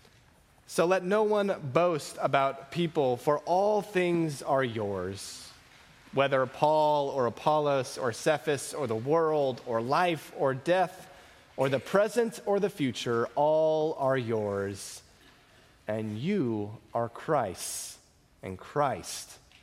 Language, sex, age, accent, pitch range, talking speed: English, male, 30-49, American, 115-155 Hz, 120 wpm